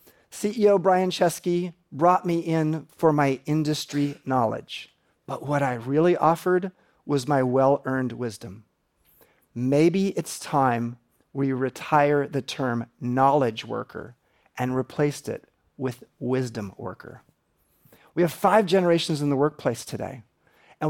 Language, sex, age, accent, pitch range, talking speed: English, male, 40-59, American, 135-175 Hz, 125 wpm